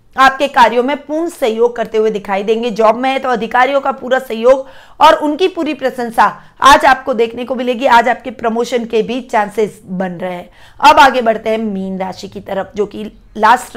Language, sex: Hindi, female